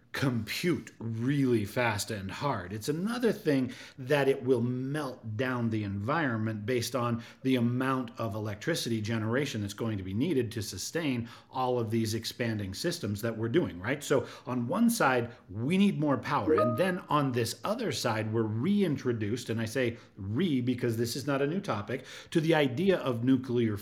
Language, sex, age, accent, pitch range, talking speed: English, male, 40-59, American, 115-145 Hz, 175 wpm